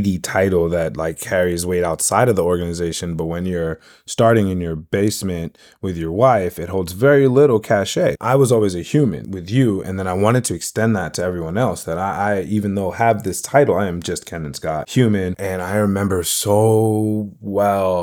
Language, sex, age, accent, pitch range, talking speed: English, male, 20-39, American, 90-115 Hz, 200 wpm